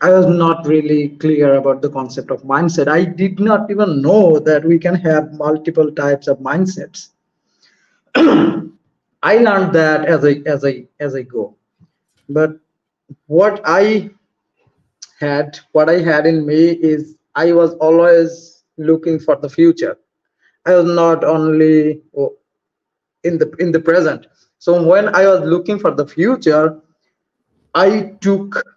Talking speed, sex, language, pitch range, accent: 145 wpm, male, English, 150-185 Hz, Indian